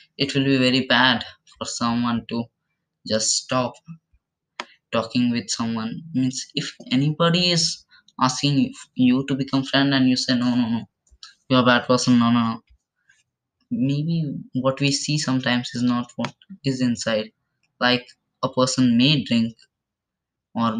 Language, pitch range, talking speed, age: English, 125-155 Hz, 145 wpm, 10-29